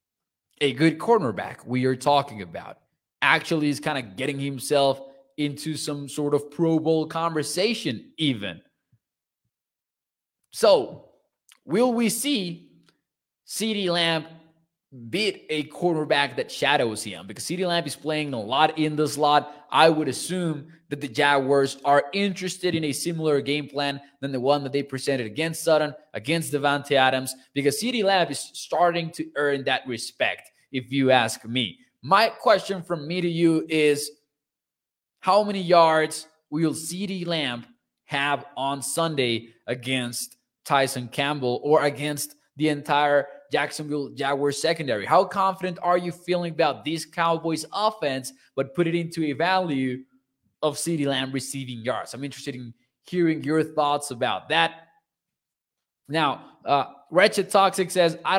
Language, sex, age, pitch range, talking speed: English, male, 20-39, 140-165 Hz, 145 wpm